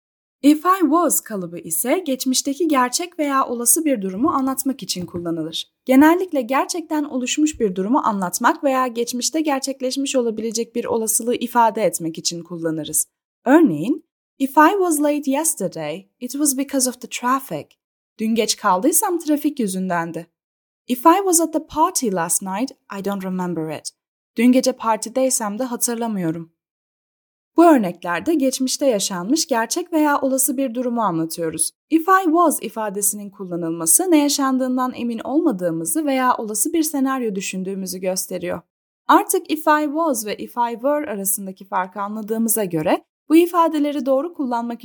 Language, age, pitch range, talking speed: Turkish, 10-29, 195-295 Hz, 140 wpm